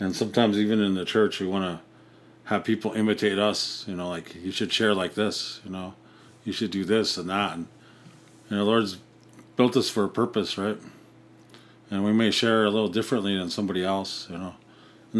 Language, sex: English, male